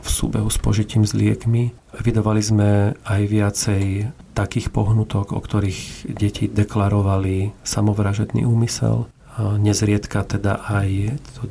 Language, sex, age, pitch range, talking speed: Slovak, male, 40-59, 100-115 Hz, 115 wpm